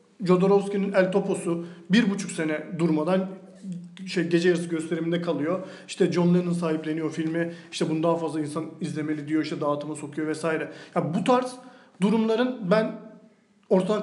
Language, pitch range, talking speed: Turkish, 165-205 Hz, 150 wpm